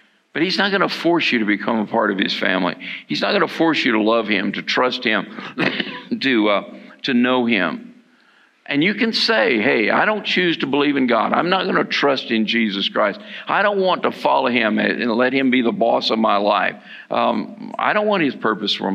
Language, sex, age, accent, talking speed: English, male, 50-69, American, 230 wpm